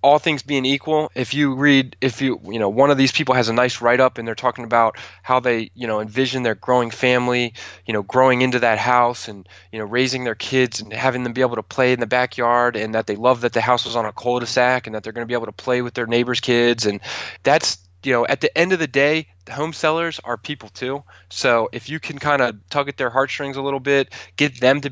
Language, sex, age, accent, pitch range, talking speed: English, male, 20-39, American, 115-130 Hz, 260 wpm